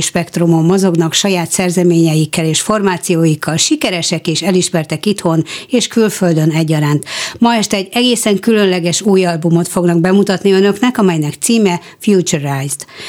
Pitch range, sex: 165-195 Hz, female